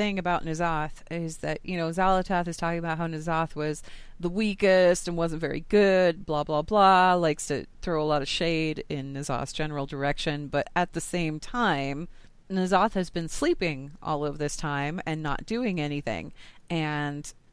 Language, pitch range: English, 145-180 Hz